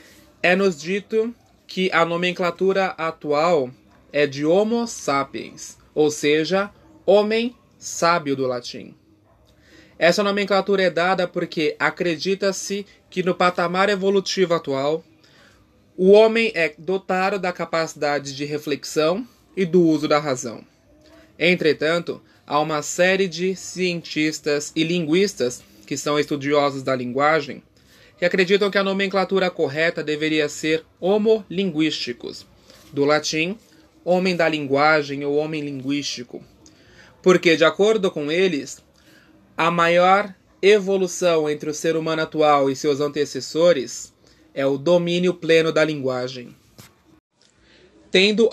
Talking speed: 115 wpm